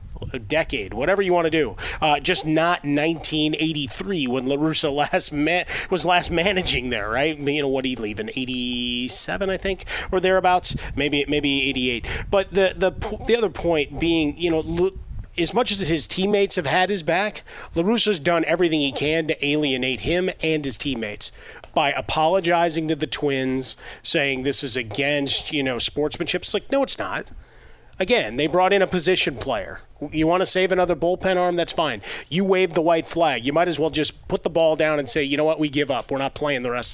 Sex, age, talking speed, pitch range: male, 30-49, 205 wpm, 140-180 Hz